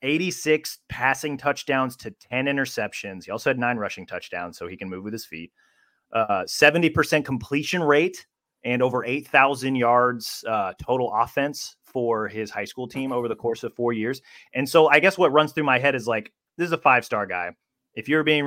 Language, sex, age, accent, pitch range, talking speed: English, male, 30-49, American, 105-135 Hz, 190 wpm